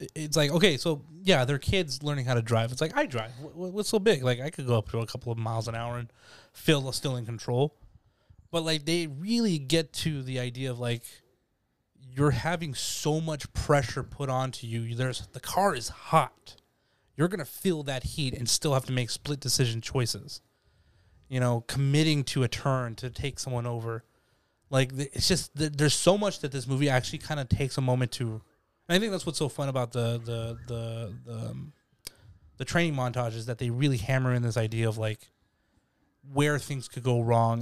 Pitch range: 115-145 Hz